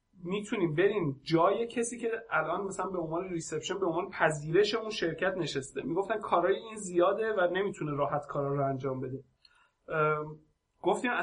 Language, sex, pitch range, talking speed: Persian, male, 165-210 Hz, 155 wpm